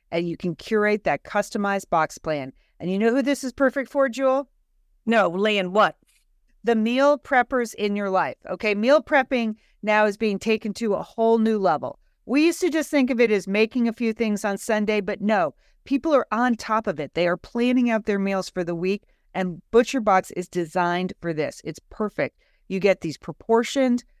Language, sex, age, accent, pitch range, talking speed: English, female, 40-59, American, 185-230 Hz, 205 wpm